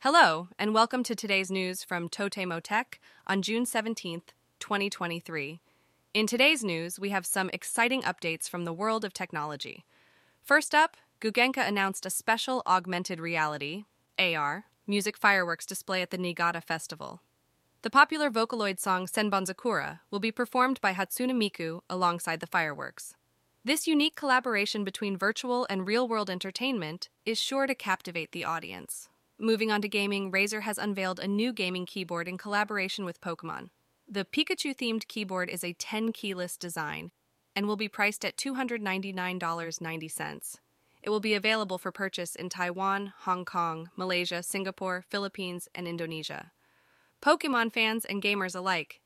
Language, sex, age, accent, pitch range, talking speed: English, female, 20-39, American, 180-225 Hz, 145 wpm